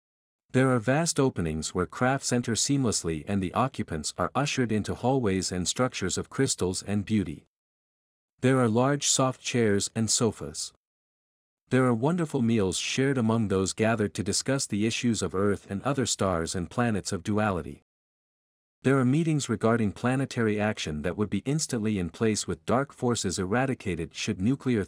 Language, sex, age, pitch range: English, male, 50-69, 95-130 Hz